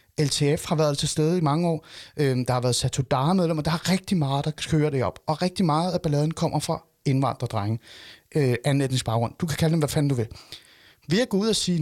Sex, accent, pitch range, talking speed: male, native, 130-170 Hz, 235 wpm